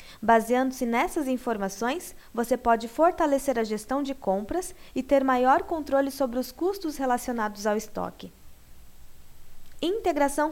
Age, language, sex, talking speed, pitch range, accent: 20-39, Portuguese, female, 120 wpm, 230-295 Hz, Brazilian